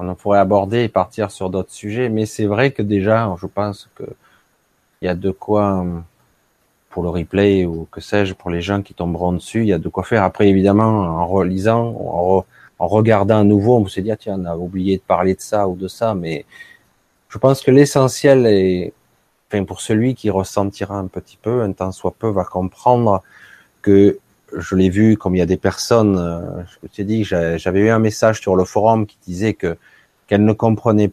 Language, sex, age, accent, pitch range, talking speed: French, male, 30-49, French, 95-115 Hz, 210 wpm